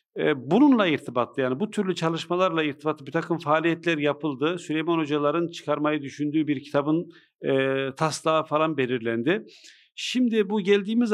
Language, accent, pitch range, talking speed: Turkish, native, 145-185 Hz, 130 wpm